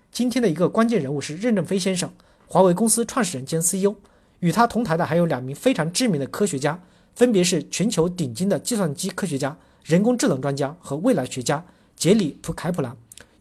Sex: male